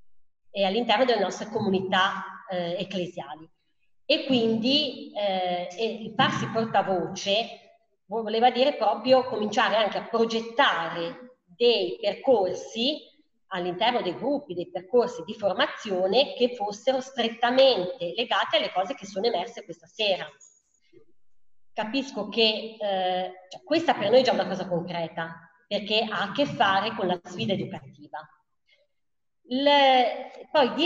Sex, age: female, 30-49